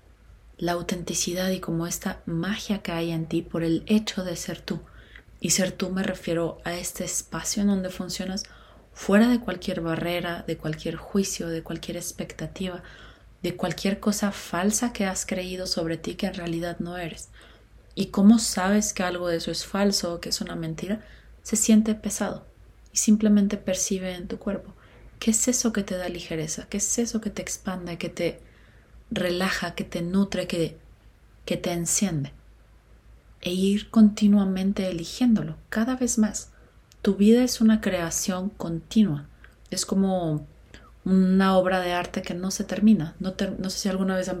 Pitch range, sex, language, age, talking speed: 170-205 Hz, female, Spanish, 30-49, 175 wpm